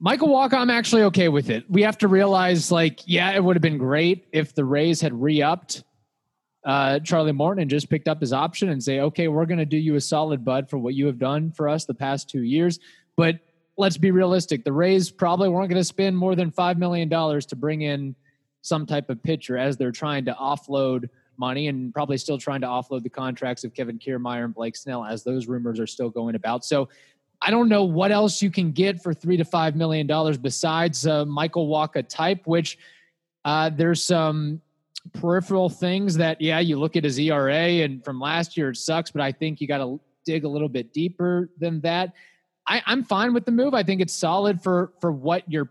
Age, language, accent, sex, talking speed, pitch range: 20-39, English, American, male, 220 wpm, 140-175 Hz